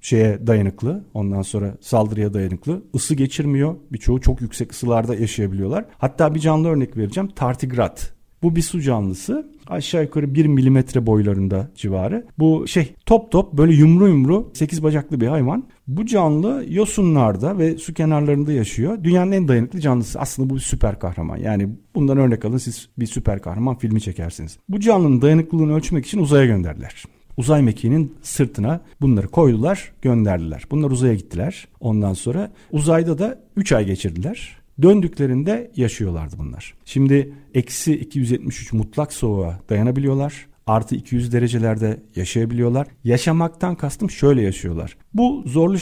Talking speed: 140 wpm